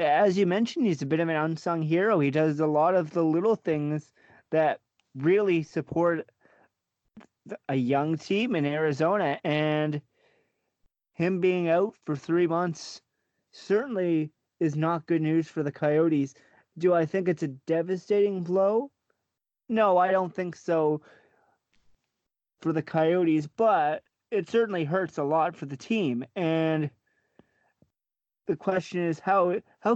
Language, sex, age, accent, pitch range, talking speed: English, male, 30-49, American, 155-190 Hz, 140 wpm